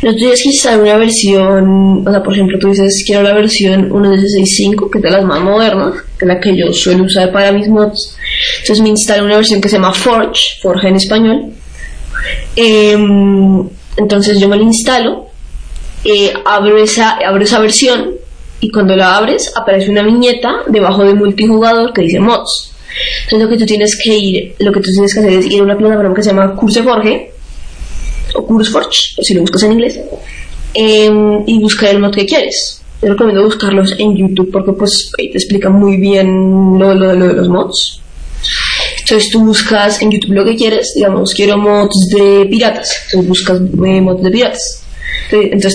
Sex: female